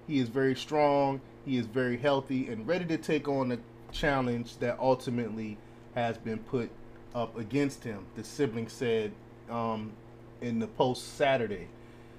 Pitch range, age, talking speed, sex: 115-135 Hz, 30-49, 155 wpm, male